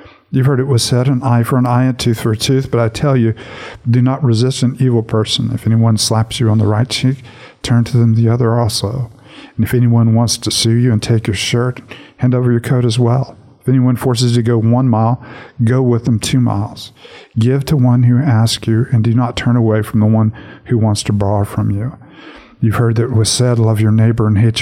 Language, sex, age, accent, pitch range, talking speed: English, male, 50-69, American, 110-125 Hz, 245 wpm